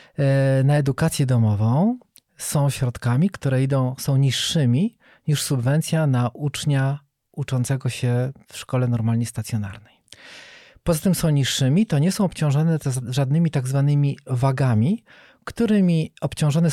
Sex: male